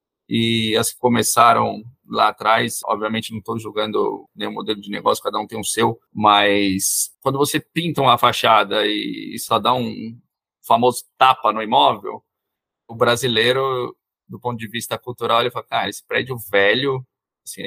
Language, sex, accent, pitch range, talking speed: Portuguese, male, Brazilian, 115-140 Hz, 160 wpm